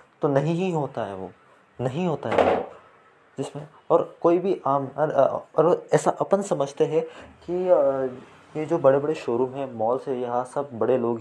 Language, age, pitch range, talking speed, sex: Hindi, 20-39, 120-140 Hz, 175 wpm, male